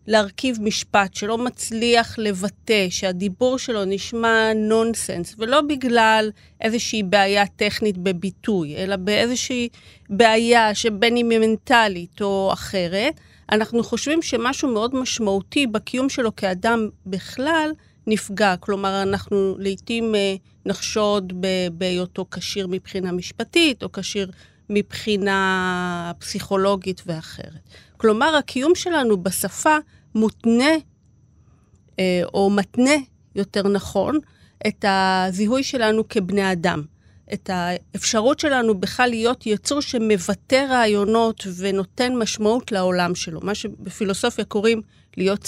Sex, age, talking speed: female, 40-59, 100 wpm